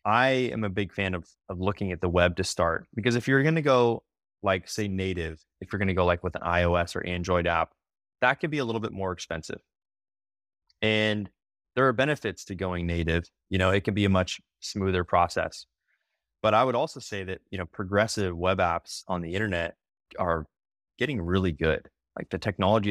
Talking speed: 205 wpm